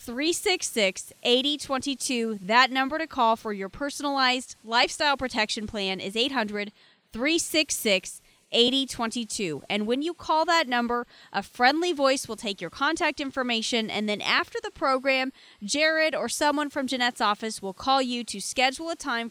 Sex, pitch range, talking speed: female, 210-265 Hz, 135 wpm